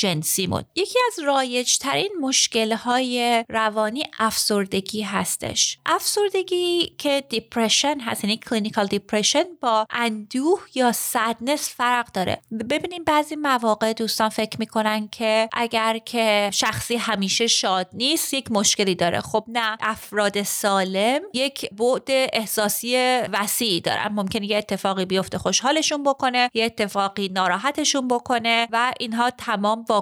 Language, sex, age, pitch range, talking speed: Persian, female, 30-49, 205-265 Hz, 120 wpm